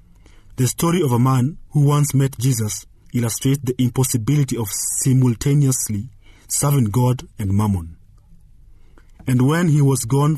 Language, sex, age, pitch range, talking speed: English, male, 40-59, 100-135 Hz, 135 wpm